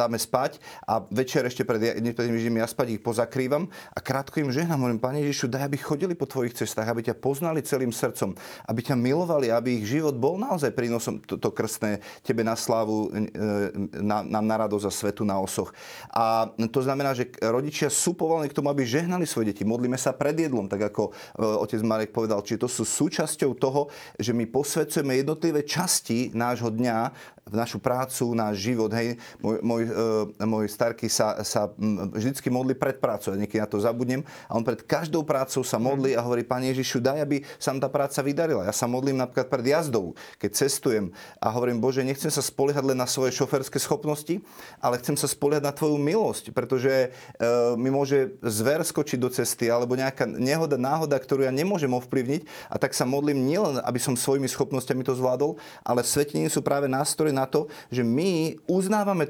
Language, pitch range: Slovak, 115-145 Hz